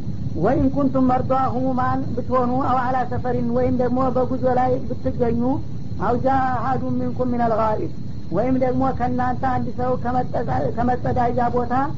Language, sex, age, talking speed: Amharic, female, 50-69, 130 wpm